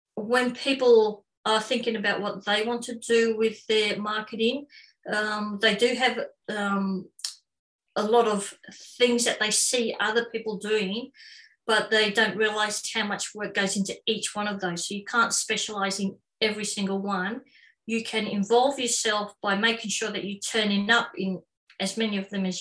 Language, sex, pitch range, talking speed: English, female, 195-225 Hz, 180 wpm